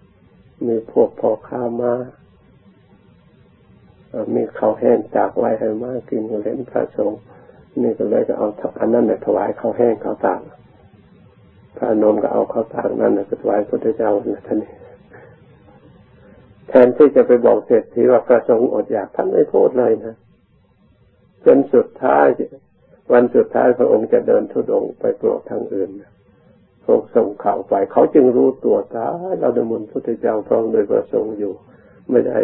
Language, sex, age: Thai, male, 60-79